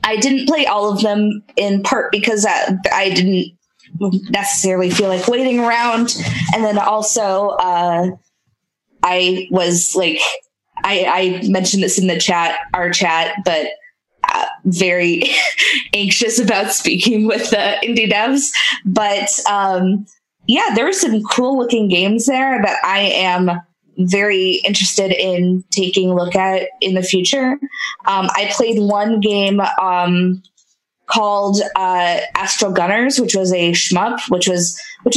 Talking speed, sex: 140 wpm, female